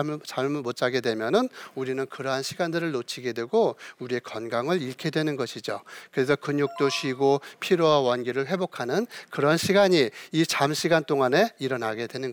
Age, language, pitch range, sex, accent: 40-59, Korean, 130-170 Hz, male, native